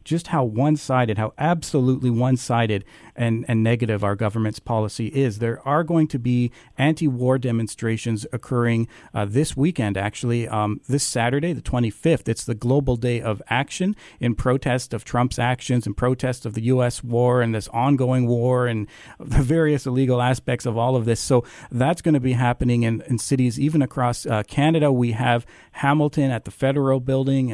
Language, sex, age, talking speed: English, male, 40-59, 175 wpm